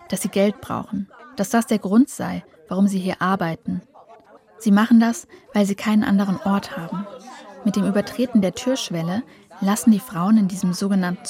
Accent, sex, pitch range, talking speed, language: German, female, 185-225 Hz, 175 wpm, German